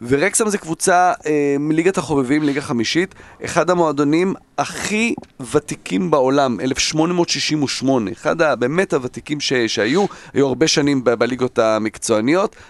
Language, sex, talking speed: Hebrew, male, 120 wpm